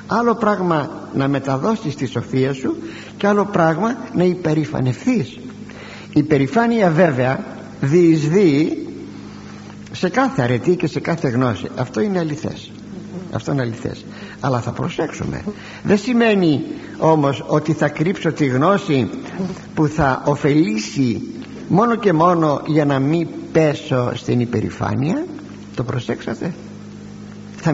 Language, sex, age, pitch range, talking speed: Greek, male, 50-69, 130-190 Hz, 120 wpm